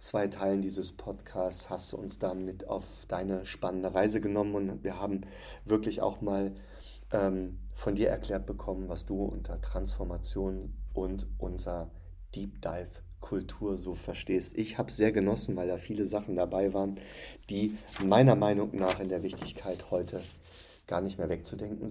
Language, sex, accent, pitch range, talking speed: German, male, German, 90-105 Hz, 155 wpm